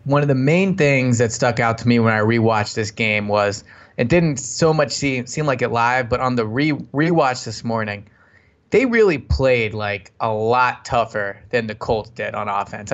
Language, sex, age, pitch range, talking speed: English, male, 20-39, 115-135 Hz, 210 wpm